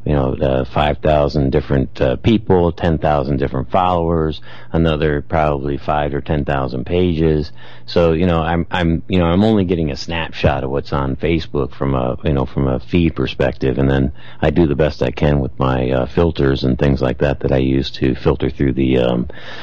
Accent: American